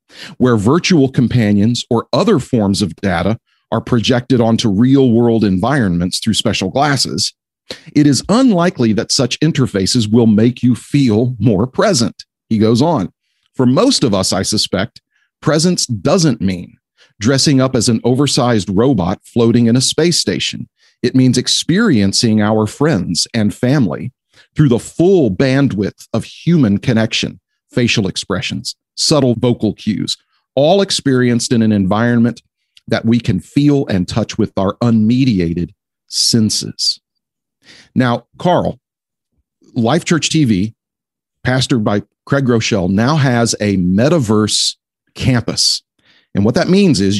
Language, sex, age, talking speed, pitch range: English, male, 40-59, 135 wpm, 105-135 Hz